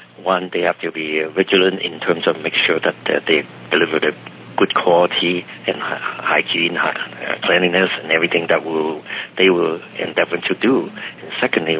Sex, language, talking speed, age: male, English, 185 wpm, 60-79